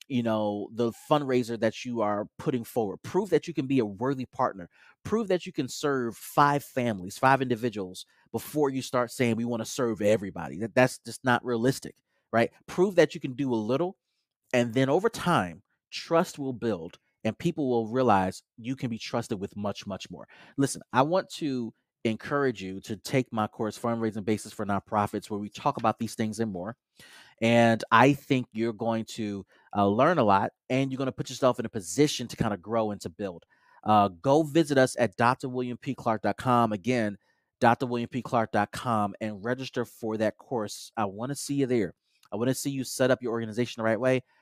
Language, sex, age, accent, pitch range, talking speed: English, male, 30-49, American, 105-130 Hz, 195 wpm